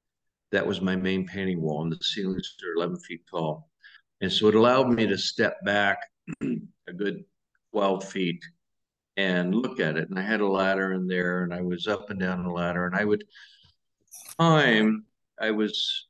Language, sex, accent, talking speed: English, male, American, 185 wpm